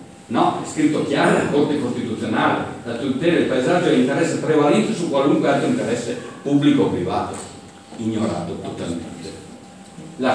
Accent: native